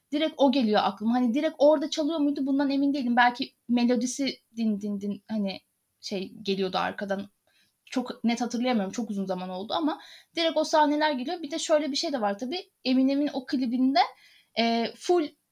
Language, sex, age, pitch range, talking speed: Turkish, female, 10-29, 200-265 Hz, 175 wpm